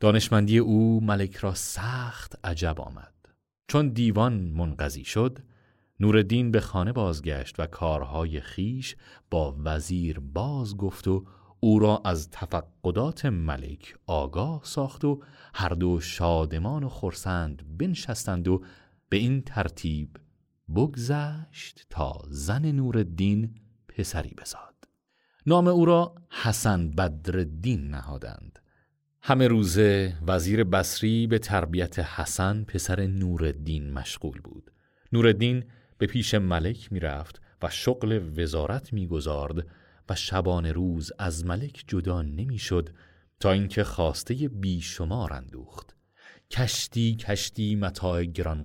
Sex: male